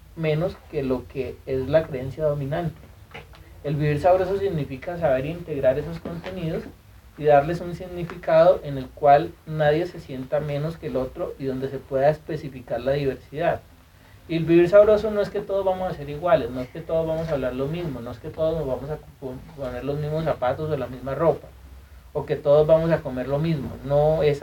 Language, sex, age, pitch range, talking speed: Spanish, male, 30-49, 135-165 Hz, 205 wpm